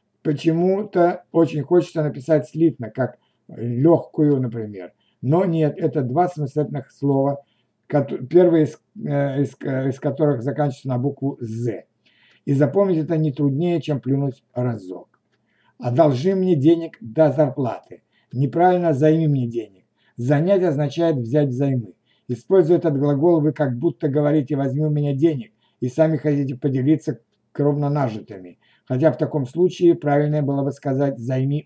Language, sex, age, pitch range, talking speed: Russian, male, 60-79, 125-160 Hz, 135 wpm